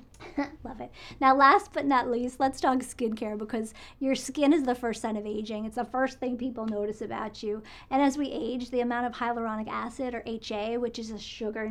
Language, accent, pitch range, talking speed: English, American, 215-250 Hz, 220 wpm